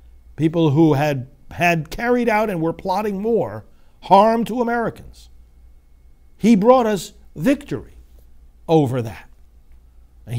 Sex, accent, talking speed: male, American, 115 wpm